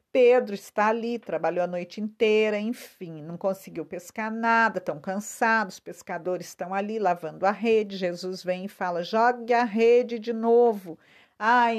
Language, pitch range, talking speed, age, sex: Portuguese, 185-225 Hz, 160 wpm, 50-69, female